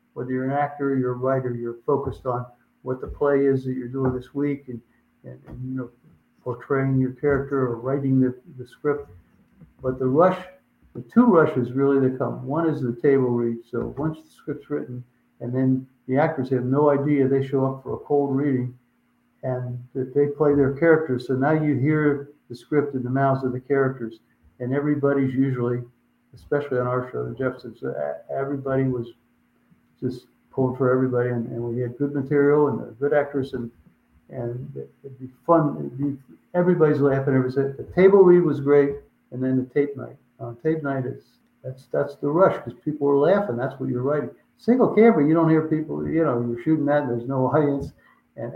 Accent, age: American, 60-79